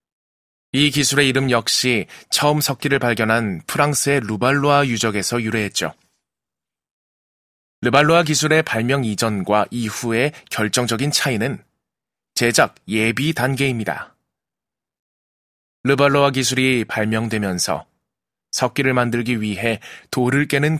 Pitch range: 110-145 Hz